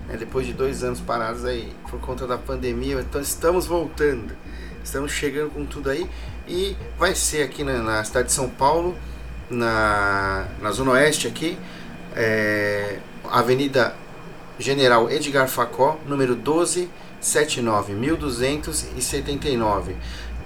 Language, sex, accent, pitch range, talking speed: Portuguese, male, Brazilian, 115-150 Hz, 125 wpm